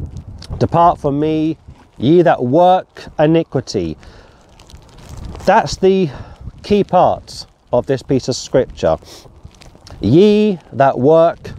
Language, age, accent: English, 40-59, British